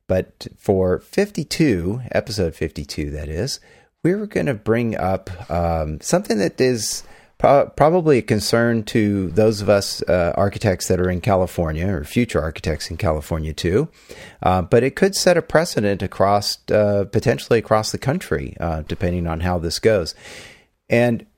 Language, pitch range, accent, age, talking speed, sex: English, 85-115 Hz, American, 40-59, 155 wpm, male